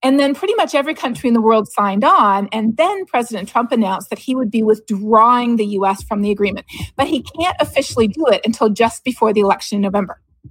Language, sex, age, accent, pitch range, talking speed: English, female, 40-59, American, 215-280 Hz, 225 wpm